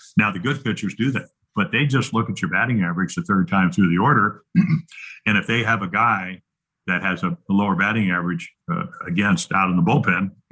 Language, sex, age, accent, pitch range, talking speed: English, male, 50-69, American, 90-125 Hz, 215 wpm